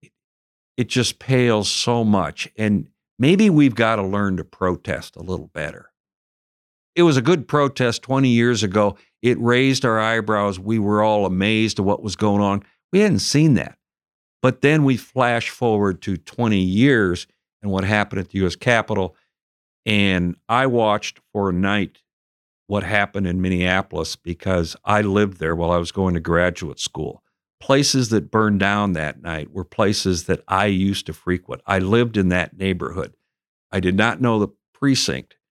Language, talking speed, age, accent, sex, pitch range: English, 170 wpm, 60-79, American, male, 95-115 Hz